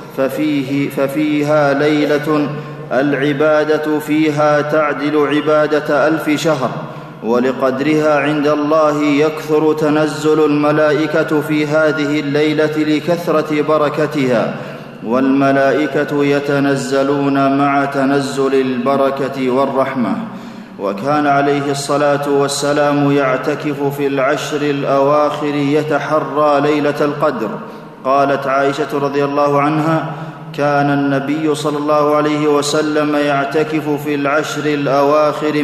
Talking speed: 85 wpm